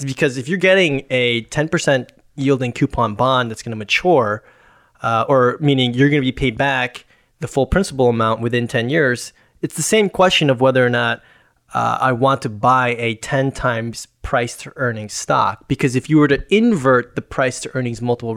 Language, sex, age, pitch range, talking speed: English, male, 20-39, 120-155 Hz, 185 wpm